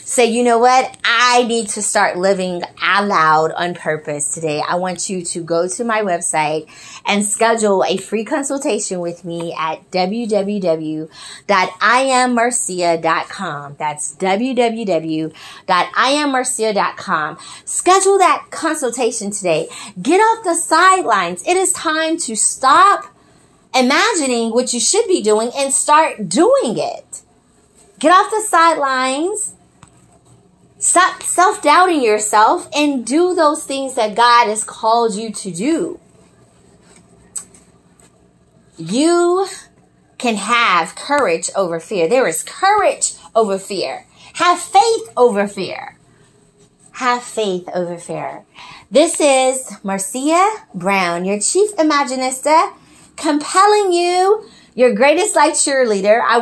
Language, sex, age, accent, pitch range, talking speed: English, female, 30-49, American, 190-300 Hz, 115 wpm